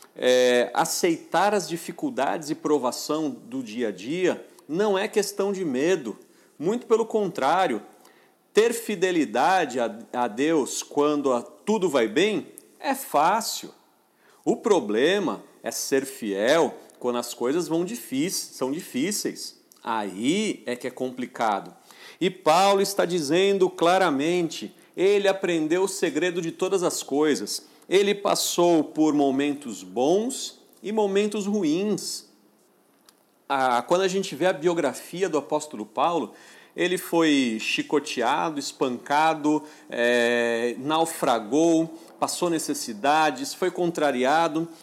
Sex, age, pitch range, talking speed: male, 40-59, 145-200 Hz, 110 wpm